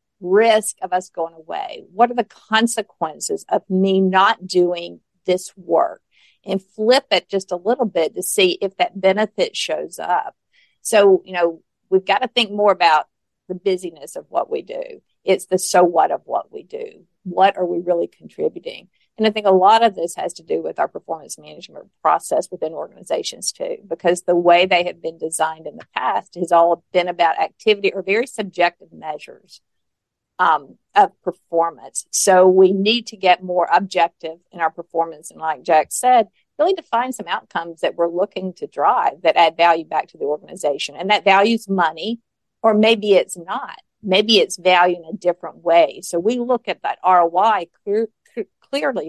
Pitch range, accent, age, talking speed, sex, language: 175-225 Hz, American, 50-69, 185 wpm, female, English